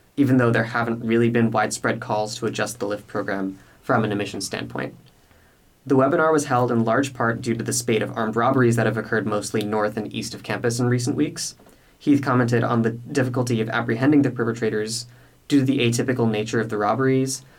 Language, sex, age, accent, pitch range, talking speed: English, male, 20-39, American, 110-130 Hz, 205 wpm